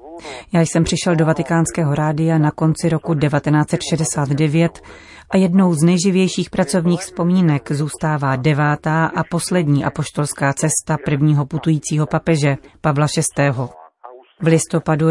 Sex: female